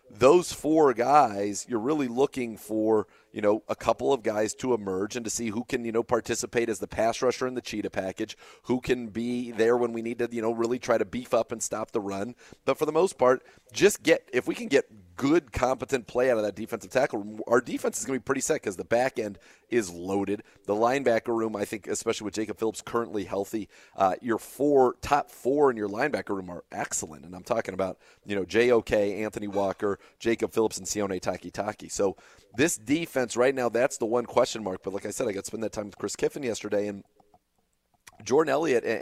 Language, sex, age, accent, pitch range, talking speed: English, male, 30-49, American, 105-130 Hz, 225 wpm